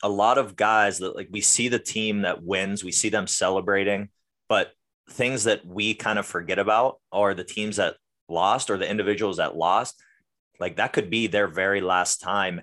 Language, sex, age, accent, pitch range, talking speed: English, male, 20-39, American, 90-105 Hz, 200 wpm